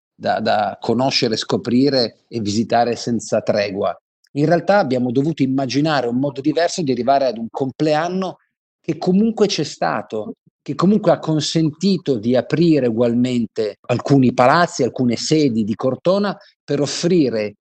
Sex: male